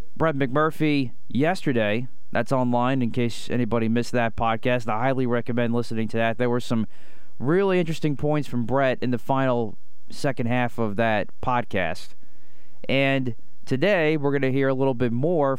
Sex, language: male, English